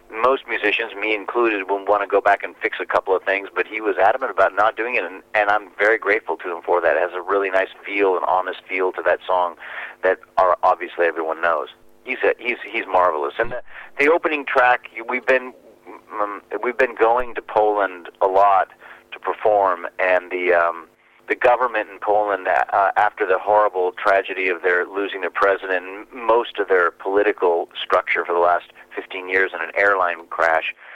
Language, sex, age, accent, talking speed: English, male, 40-59, American, 200 wpm